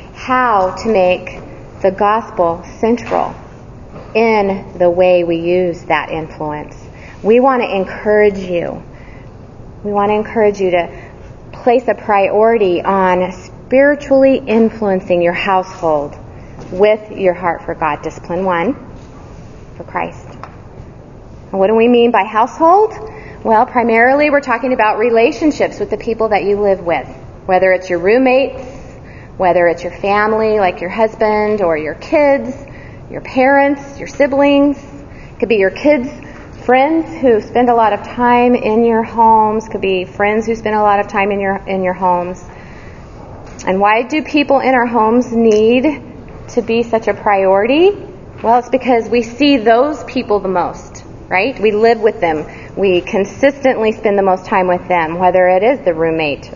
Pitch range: 180-240 Hz